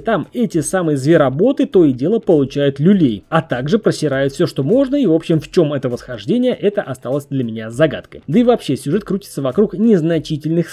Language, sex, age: Russian, male, 20-39